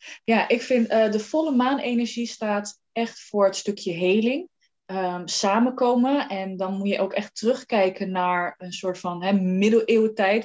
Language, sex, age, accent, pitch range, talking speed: Dutch, female, 20-39, Dutch, 180-215 Hz, 160 wpm